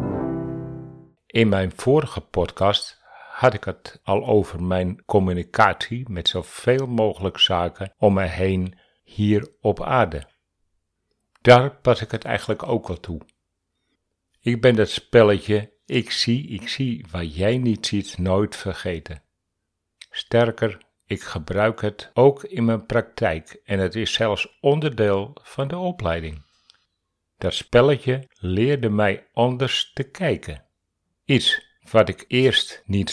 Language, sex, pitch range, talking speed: Dutch, male, 90-115 Hz, 130 wpm